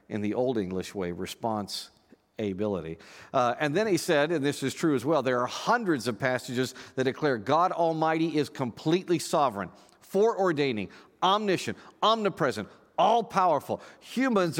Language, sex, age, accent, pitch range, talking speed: English, male, 50-69, American, 120-165 Hz, 145 wpm